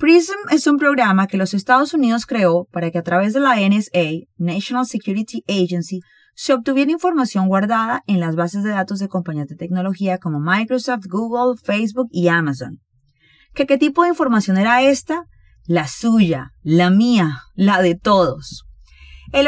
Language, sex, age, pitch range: Spanish, female, 30-49, 175-240 Hz